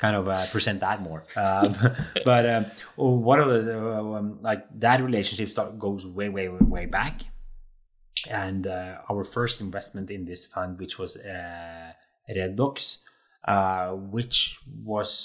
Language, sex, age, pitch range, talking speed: English, male, 30-49, 95-110 Hz, 150 wpm